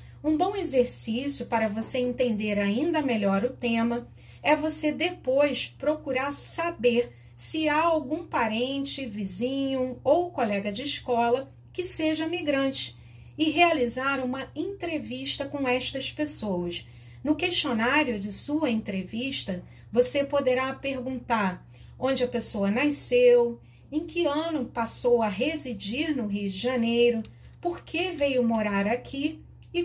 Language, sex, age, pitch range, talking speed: Portuguese, female, 40-59, 230-305 Hz, 125 wpm